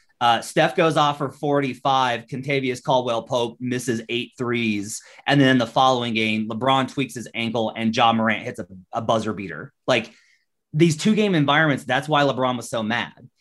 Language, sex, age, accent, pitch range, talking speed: English, male, 30-49, American, 110-135 Hz, 170 wpm